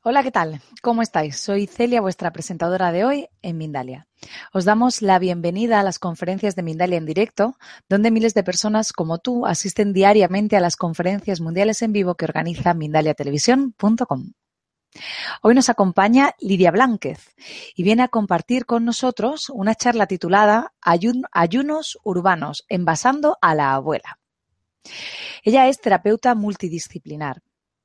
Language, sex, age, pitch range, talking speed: Spanish, female, 30-49, 175-230 Hz, 140 wpm